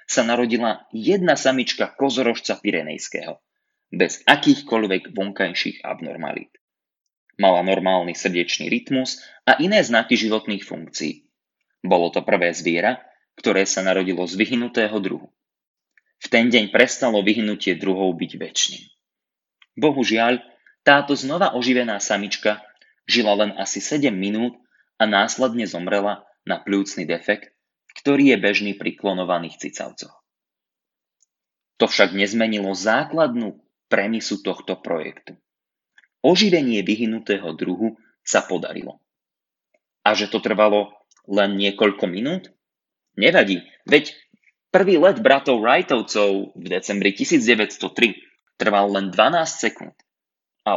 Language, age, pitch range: Slovak, 20-39, 100-120 Hz